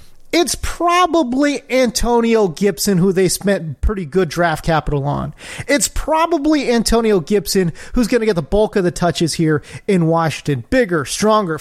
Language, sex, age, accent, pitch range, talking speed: English, male, 30-49, American, 170-245 Hz, 155 wpm